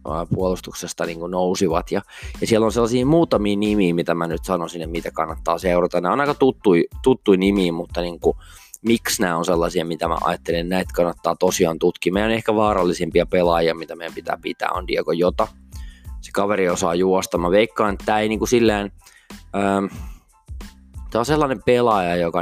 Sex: male